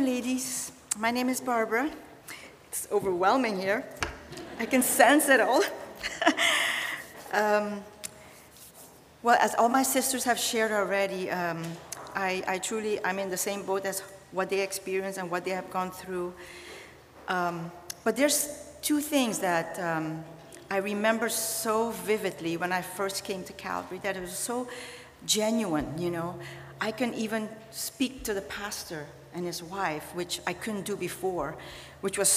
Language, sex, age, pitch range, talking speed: English, female, 40-59, 185-235 Hz, 150 wpm